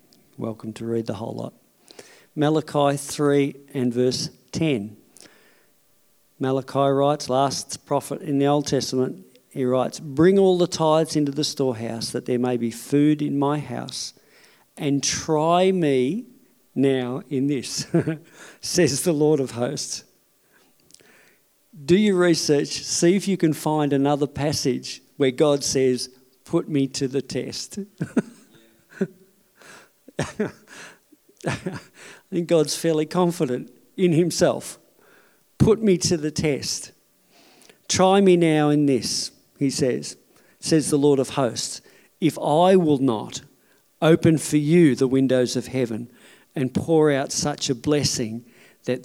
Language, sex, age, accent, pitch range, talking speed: English, male, 50-69, Australian, 130-160 Hz, 130 wpm